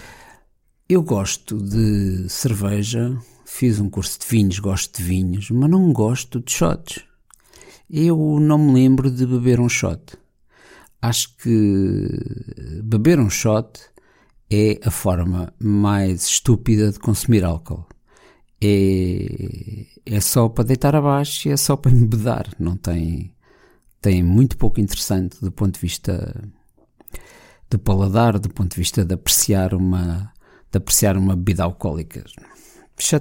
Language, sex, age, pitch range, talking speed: Portuguese, male, 50-69, 95-120 Hz, 130 wpm